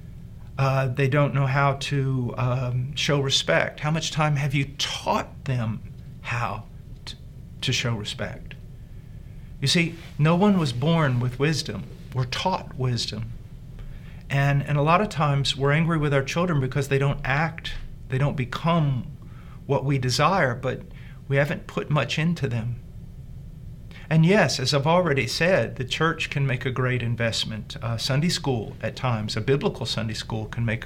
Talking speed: 165 wpm